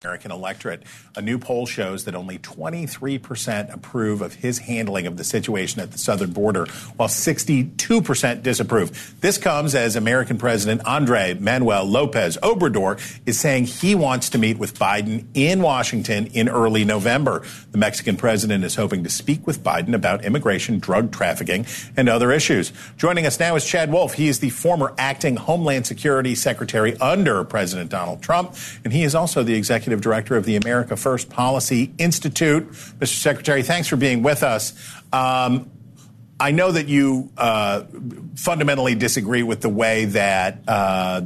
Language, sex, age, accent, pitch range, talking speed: English, male, 50-69, American, 110-145 Hz, 165 wpm